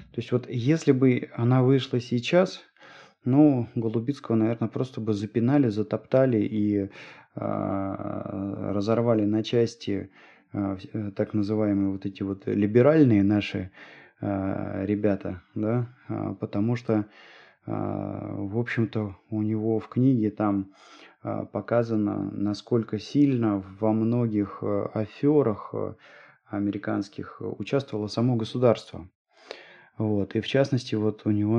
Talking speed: 110 wpm